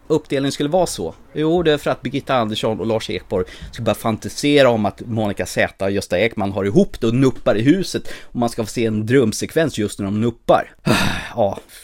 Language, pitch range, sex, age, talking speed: Swedish, 105-145 Hz, male, 30-49, 220 wpm